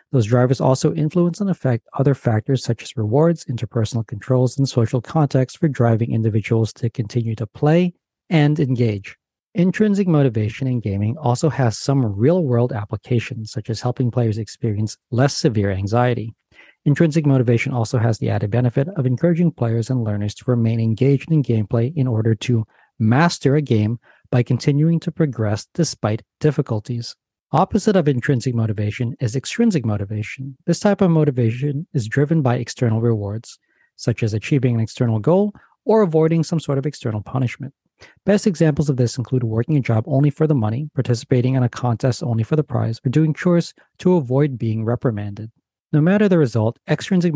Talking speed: 165 wpm